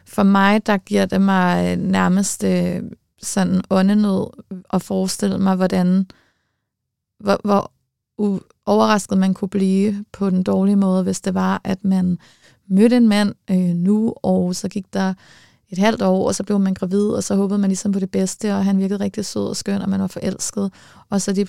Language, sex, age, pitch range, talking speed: Danish, female, 30-49, 185-210 Hz, 190 wpm